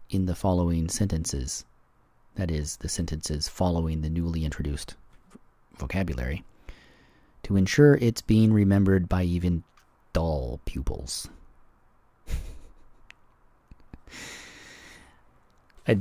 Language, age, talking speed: English, 30-49, 90 wpm